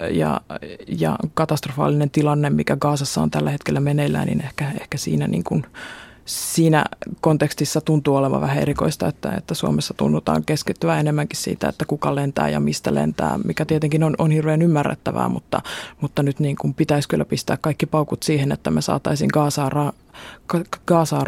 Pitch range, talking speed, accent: 135-155 Hz, 165 wpm, native